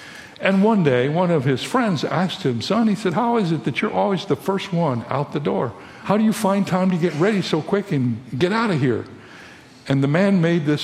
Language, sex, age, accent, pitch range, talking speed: English, male, 60-79, American, 120-165 Hz, 245 wpm